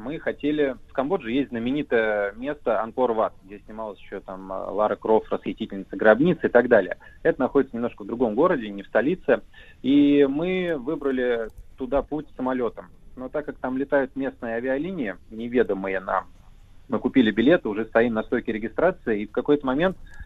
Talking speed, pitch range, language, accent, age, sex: 165 wpm, 105-145 Hz, Russian, native, 30-49, male